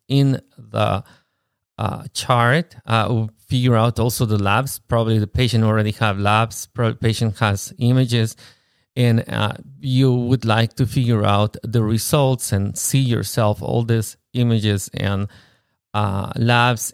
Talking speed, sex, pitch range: 140 wpm, male, 110-130 Hz